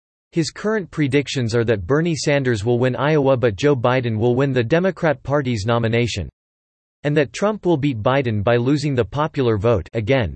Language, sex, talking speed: English, male, 180 wpm